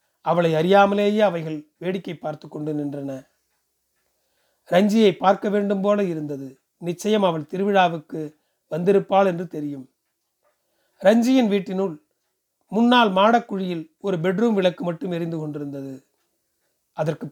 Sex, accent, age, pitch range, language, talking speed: male, native, 40-59, 160-220 Hz, Tamil, 100 wpm